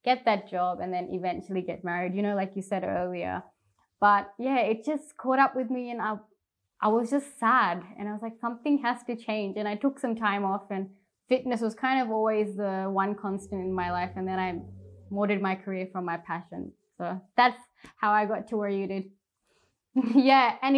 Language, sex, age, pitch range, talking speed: English, female, 20-39, 195-245 Hz, 215 wpm